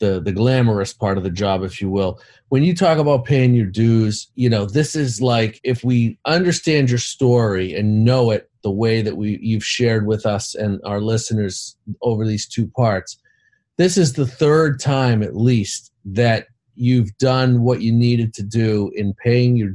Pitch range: 110-130 Hz